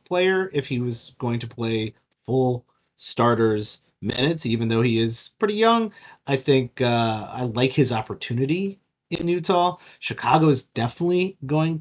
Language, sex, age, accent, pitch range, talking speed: English, male, 30-49, American, 110-155 Hz, 145 wpm